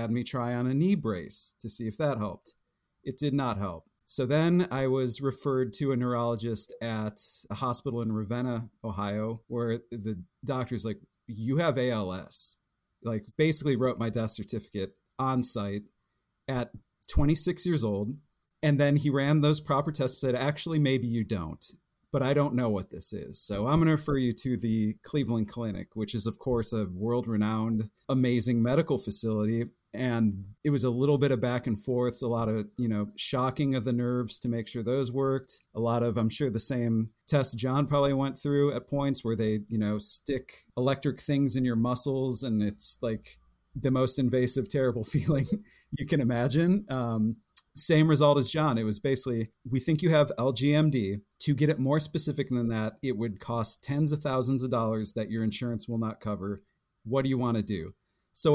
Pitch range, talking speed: 110-140 Hz, 190 wpm